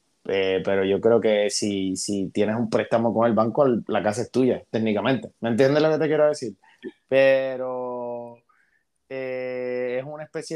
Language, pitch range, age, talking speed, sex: Spanish, 115-145 Hz, 20-39, 170 wpm, male